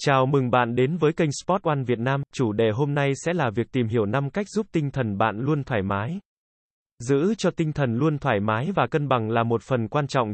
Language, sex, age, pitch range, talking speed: Vietnamese, male, 20-39, 115-155 Hz, 250 wpm